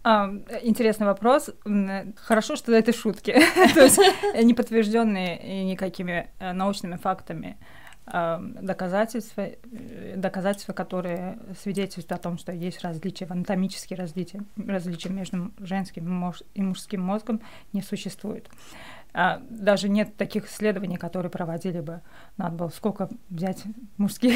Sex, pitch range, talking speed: female, 180-220 Hz, 110 wpm